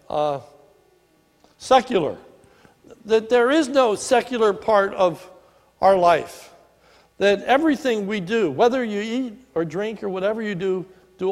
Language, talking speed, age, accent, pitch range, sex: English, 135 wpm, 60-79, American, 165-215 Hz, male